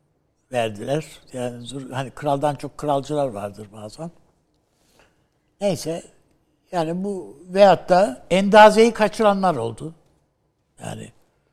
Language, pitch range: Turkish, 135-180 Hz